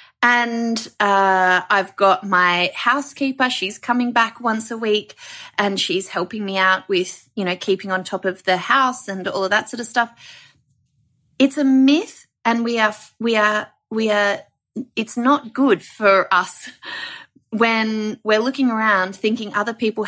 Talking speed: 165 wpm